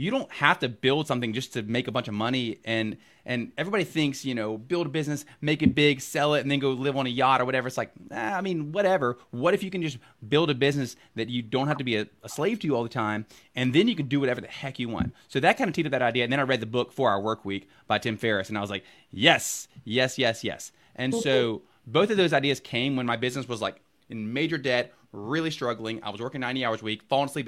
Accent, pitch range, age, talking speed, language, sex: American, 115-145 Hz, 30-49, 280 wpm, English, male